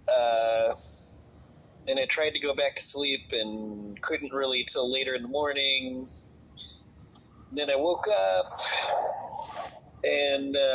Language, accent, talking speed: English, American, 130 wpm